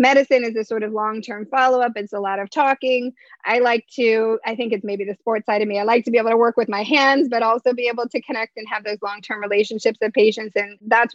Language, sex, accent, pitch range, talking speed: English, female, American, 215-265 Hz, 280 wpm